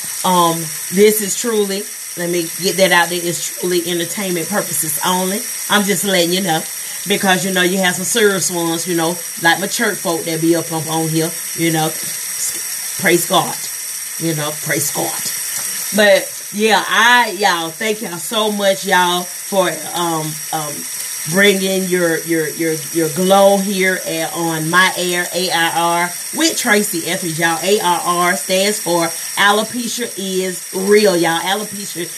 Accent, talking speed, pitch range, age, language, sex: American, 155 wpm, 165-200 Hz, 30-49, English, female